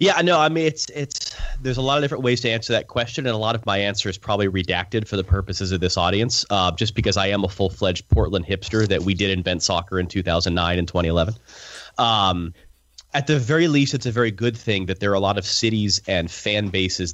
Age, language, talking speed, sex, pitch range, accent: 30-49, English, 245 wpm, male, 95-125 Hz, American